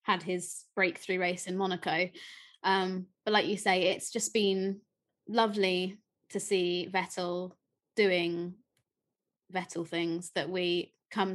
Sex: female